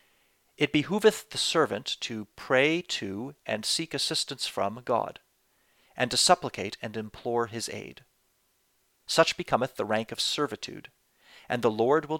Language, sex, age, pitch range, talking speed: English, male, 40-59, 105-140 Hz, 145 wpm